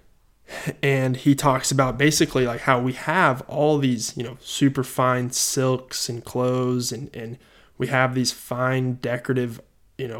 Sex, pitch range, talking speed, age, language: male, 125-135 Hz, 160 wpm, 20-39, English